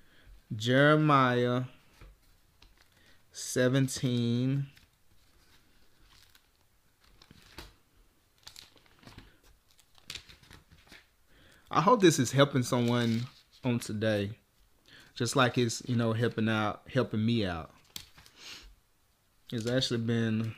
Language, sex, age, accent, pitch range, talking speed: English, male, 20-39, American, 115-155 Hz, 65 wpm